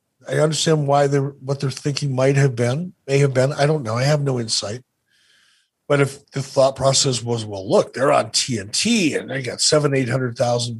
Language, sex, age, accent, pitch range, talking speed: English, male, 50-69, American, 120-145 Hz, 200 wpm